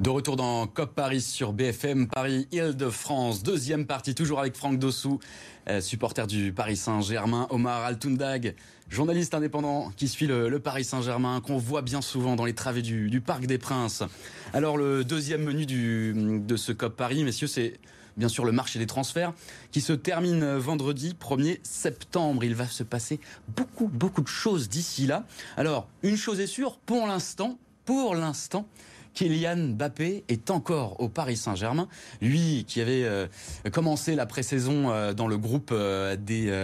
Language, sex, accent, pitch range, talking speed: French, male, French, 110-145 Hz, 165 wpm